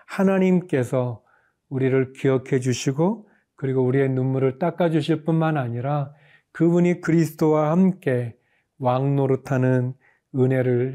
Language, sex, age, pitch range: Korean, male, 40-59, 130-165 Hz